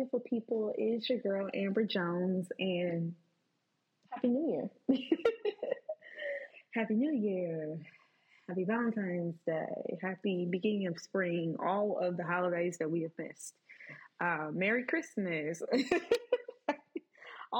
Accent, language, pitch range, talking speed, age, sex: American, English, 180-255 Hz, 105 wpm, 20-39, female